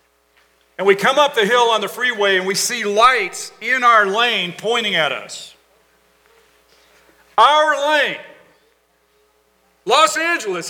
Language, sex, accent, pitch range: English, male, American, 140-220 Hz